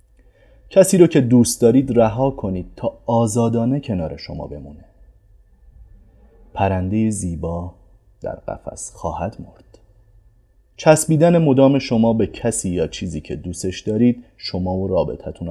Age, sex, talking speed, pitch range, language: 30-49, male, 120 wpm, 95-135 Hz, Persian